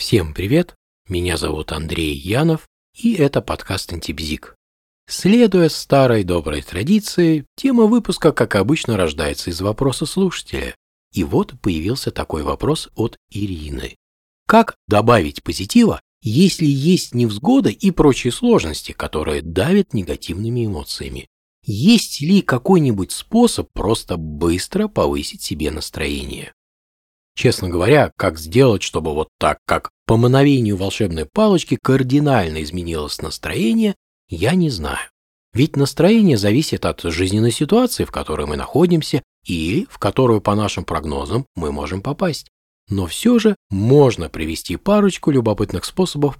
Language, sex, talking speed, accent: Russian, male, 125 wpm, native